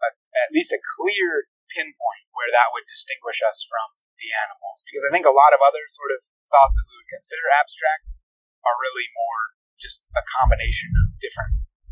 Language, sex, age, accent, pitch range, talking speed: English, male, 30-49, American, 300-460 Hz, 180 wpm